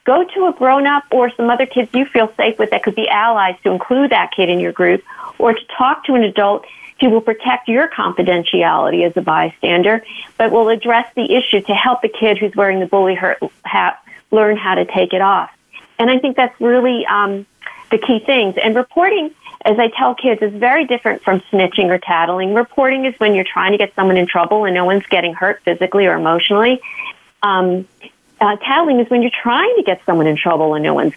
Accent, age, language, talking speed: American, 40-59, English, 215 wpm